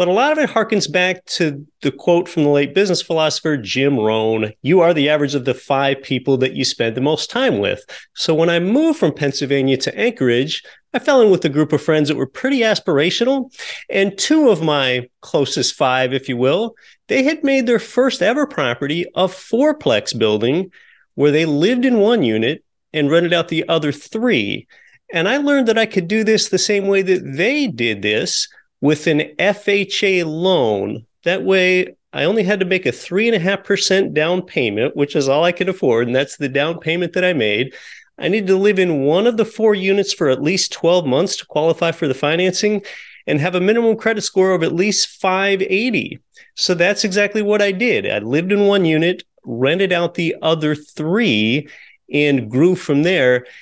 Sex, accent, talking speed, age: male, American, 205 wpm, 30-49